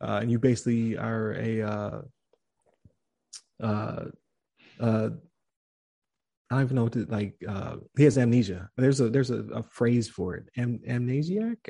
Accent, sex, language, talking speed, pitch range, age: American, male, English, 150 wpm, 110-130 Hz, 20-39